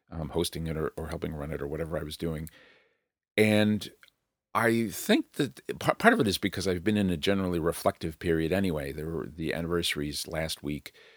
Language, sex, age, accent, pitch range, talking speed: English, male, 50-69, American, 80-100 Hz, 200 wpm